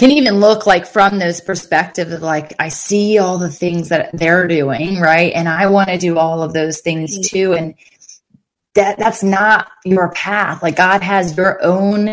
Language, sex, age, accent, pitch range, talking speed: English, female, 20-39, American, 170-205 Hz, 185 wpm